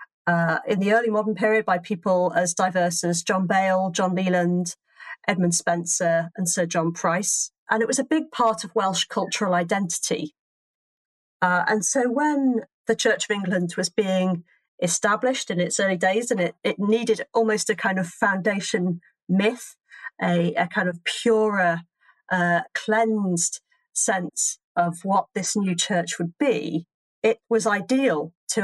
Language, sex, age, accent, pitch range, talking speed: English, female, 40-59, British, 180-230 Hz, 155 wpm